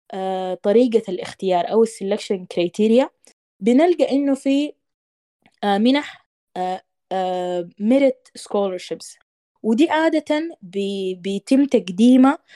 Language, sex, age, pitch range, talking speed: Arabic, female, 20-39, 190-260 Hz, 70 wpm